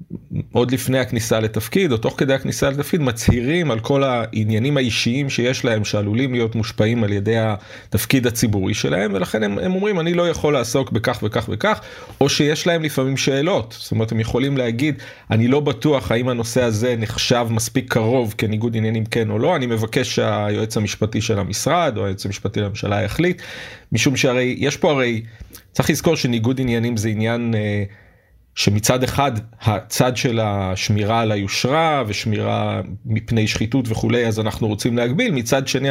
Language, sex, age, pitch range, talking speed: Hebrew, male, 30-49, 110-135 Hz, 155 wpm